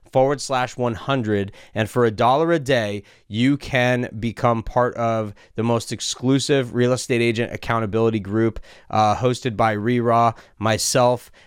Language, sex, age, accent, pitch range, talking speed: English, male, 30-49, American, 115-130 Hz, 140 wpm